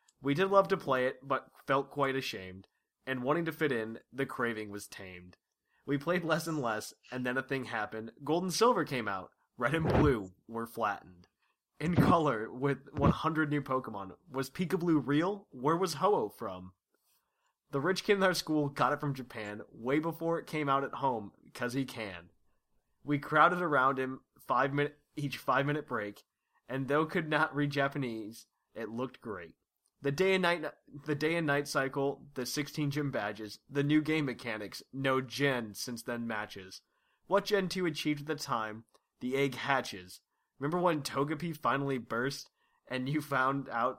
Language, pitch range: English, 120-155 Hz